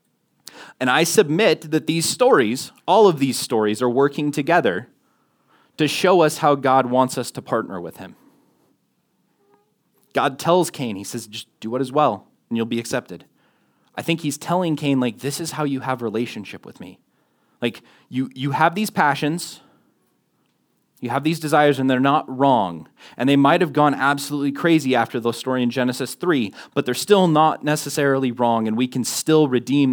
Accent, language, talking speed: American, English, 180 wpm